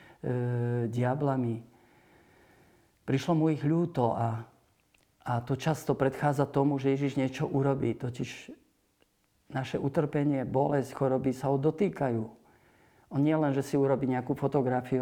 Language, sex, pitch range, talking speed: Slovak, male, 130-155 Hz, 125 wpm